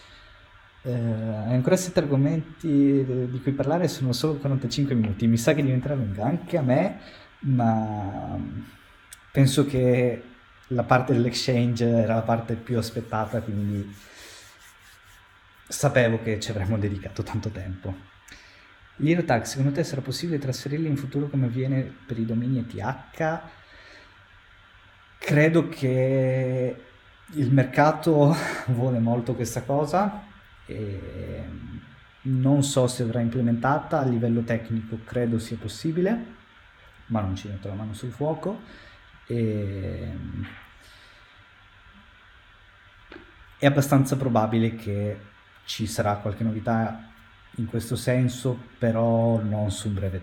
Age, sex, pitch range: 20-39, male, 100-130 Hz